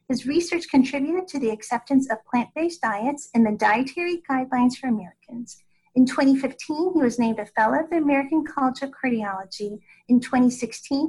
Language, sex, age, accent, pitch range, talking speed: English, female, 40-59, American, 225-280 Hz, 160 wpm